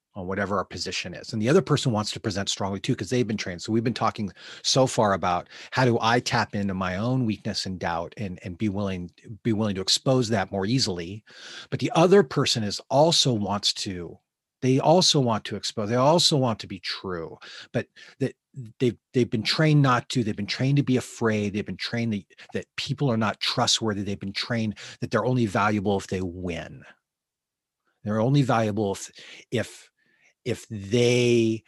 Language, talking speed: English, 195 wpm